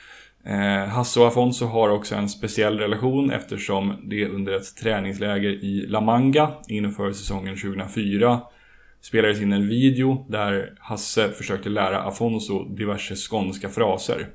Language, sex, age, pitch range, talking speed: Swedish, male, 10-29, 100-120 Hz, 130 wpm